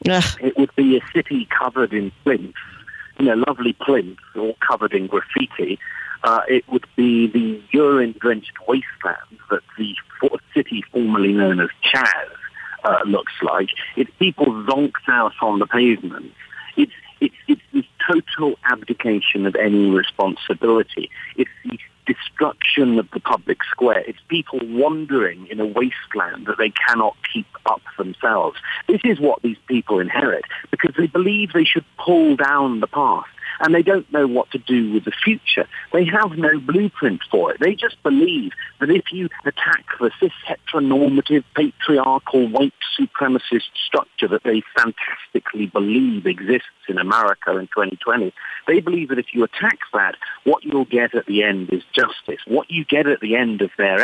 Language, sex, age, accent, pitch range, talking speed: English, male, 50-69, British, 115-170 Hz, 160 wpm